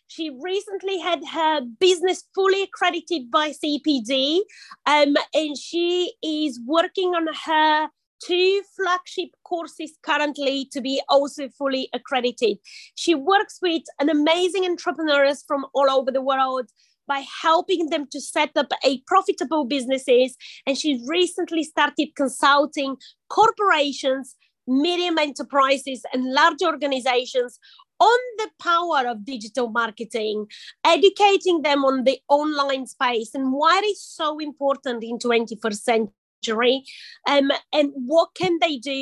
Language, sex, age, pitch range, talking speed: English, female, 30-49, 265-345 Hz, 130 wpm